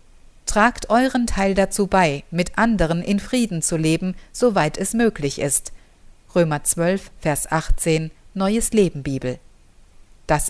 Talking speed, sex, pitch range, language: 130 wpm, female, 155-215 Hz, German